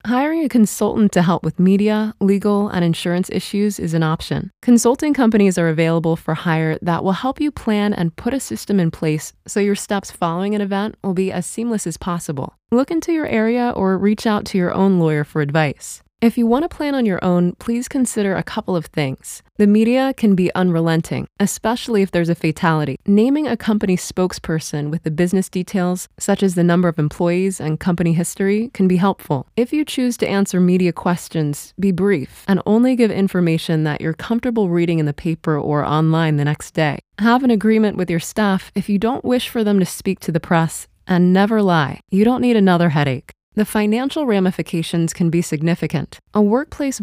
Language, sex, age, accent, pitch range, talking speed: English, female, 20-39, American, 165-215 Hz, 200 wpm